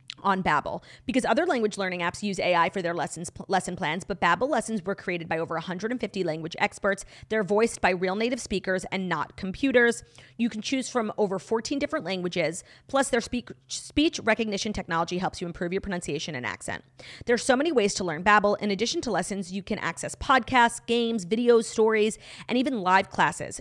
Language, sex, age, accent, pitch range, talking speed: English, female, 30-49, American, 180-240 Hz, 200 wpm